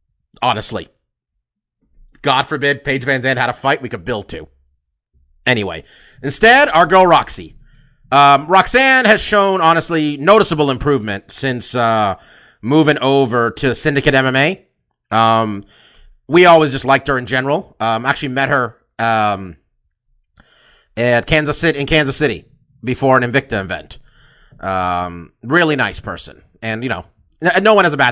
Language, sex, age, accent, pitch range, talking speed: English, male, 30-49, American, 110-155 Hz, 145 wpm